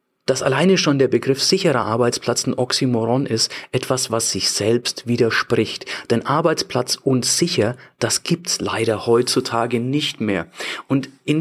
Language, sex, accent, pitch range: German, male, German, 125-160 Hz